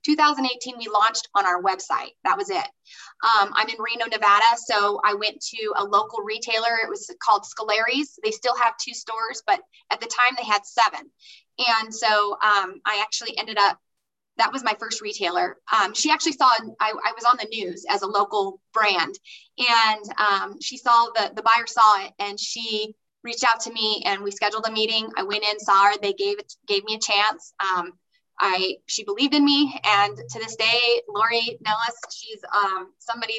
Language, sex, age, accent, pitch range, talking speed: English, female, 20-39, American, 210-245 Hz, 195 wpm